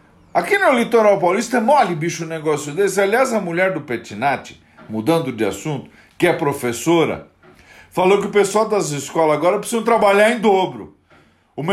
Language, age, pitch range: Portuguese, 50-69, 155-215 Hz